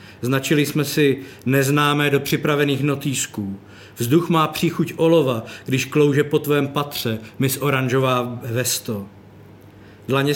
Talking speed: 115 wpm